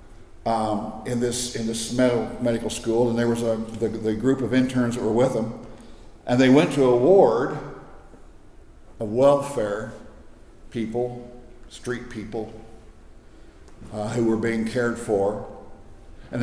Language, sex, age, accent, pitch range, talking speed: English, male, 60-79, American, 110-130 Hz, 140 wpm